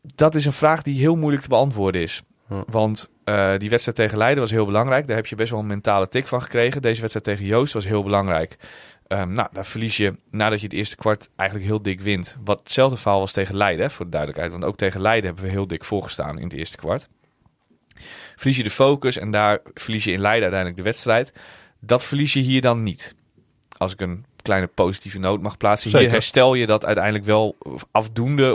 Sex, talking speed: male, 220 wpm